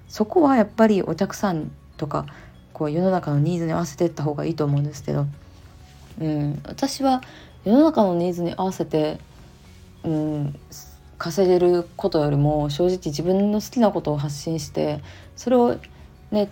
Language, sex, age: Japanese, female, 20-39